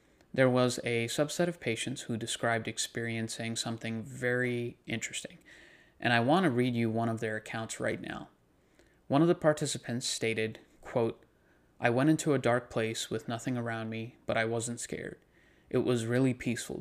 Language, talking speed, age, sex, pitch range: English, 170 wpm, 30-49, male, 115-130 Hz